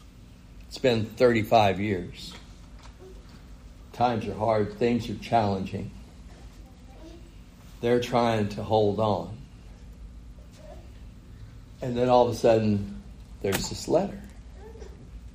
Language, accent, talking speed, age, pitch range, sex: English, American, 90 wpm, 60-79, 90-145 Hz, male